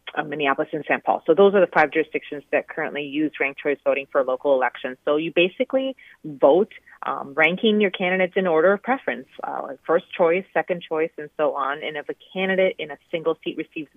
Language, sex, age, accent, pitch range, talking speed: English, female, 30-49, American, 145-185 Hz, 205 wpm